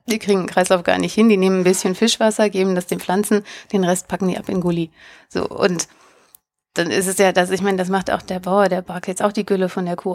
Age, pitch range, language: 30-49, 180-210 Hz, German